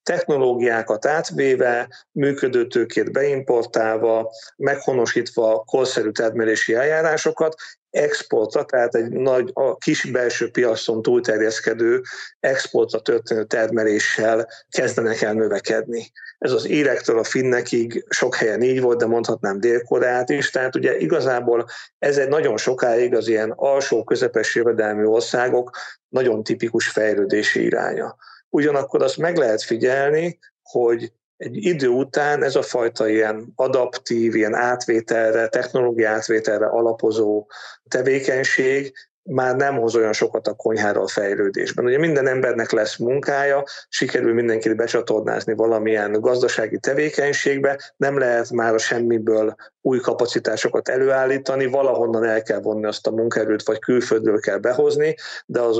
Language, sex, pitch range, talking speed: Hungarian, male, 115-150 Hz, 120 wpm